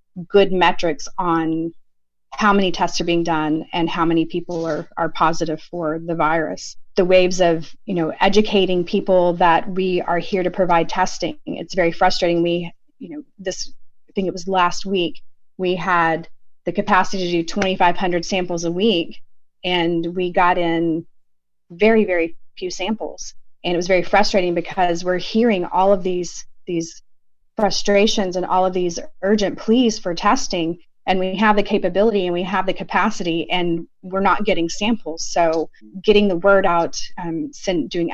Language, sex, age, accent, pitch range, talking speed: English, female, 30-49, American, 165-195 Hz, 170 wpm